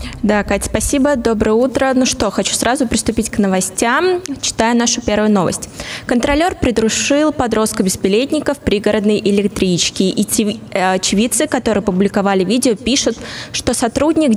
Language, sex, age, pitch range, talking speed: Russian, female, 20-39, 185-245 Hz, 125 wpm